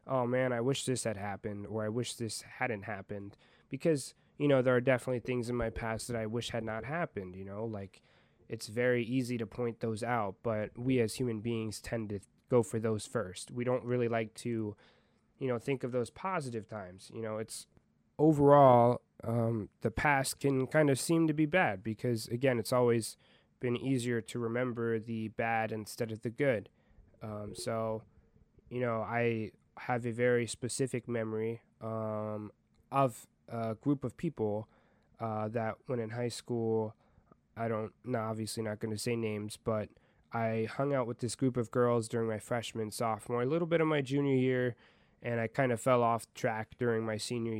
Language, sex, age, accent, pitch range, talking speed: English, male, 20-39, American, 110-125 Hz, 195 wpm